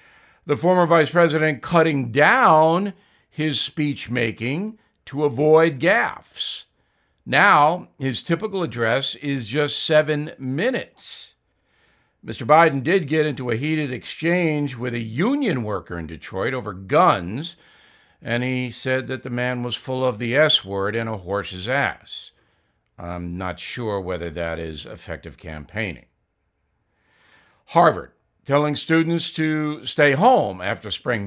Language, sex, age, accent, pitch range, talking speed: English, male, 60-79, American, 120-160 Hz, 125 wpm